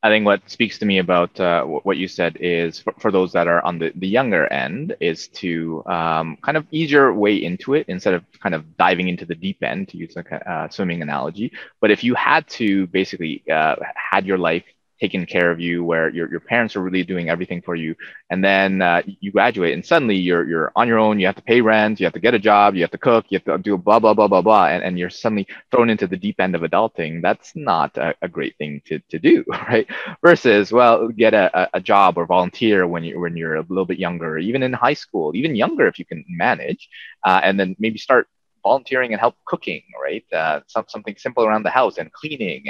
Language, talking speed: English, 245 wpm